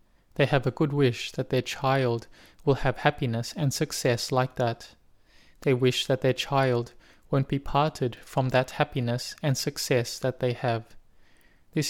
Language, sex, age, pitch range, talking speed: English, male, 20-39, 120-140 Hz, 160 wpm